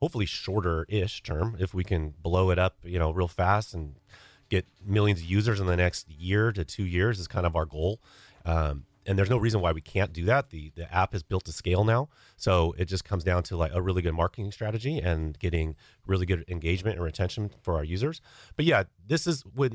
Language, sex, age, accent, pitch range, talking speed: English, male, 30-49, American, 90-115 Hz, 230 wpm